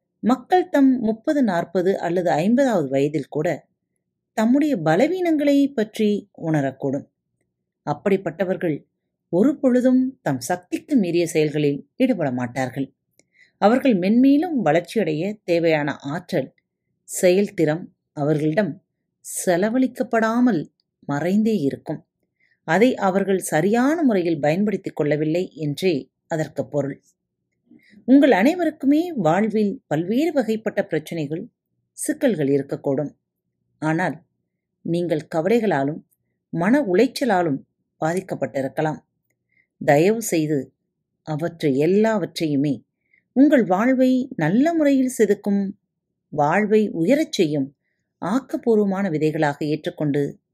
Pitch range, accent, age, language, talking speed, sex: 155-240 Hz, native, 30-49, Tamil, 80 wpm, female